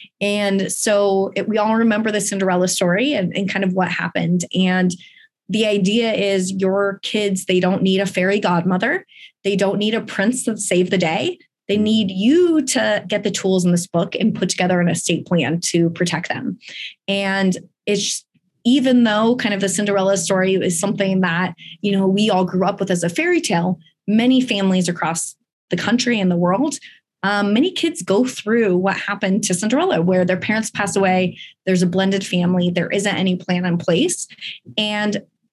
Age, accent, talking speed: 20-39, American, 185 wpm